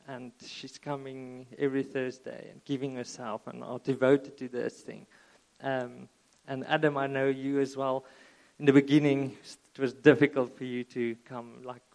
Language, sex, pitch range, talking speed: English, male, 125-140 Hz, 165 wpm